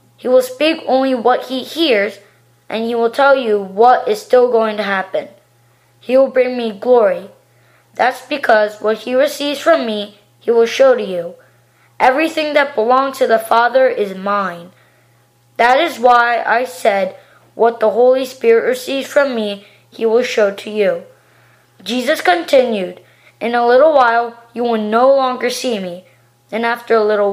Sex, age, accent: female, 20-39, American